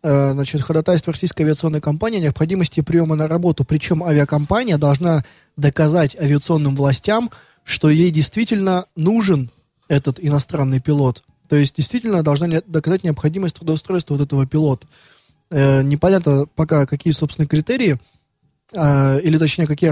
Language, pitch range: Russian, 140-165 Hz